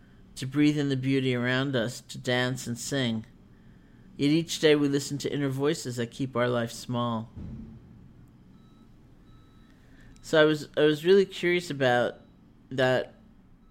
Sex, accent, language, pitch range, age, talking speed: male, American, English, 120-145 Hz, 50-69, 145 wpm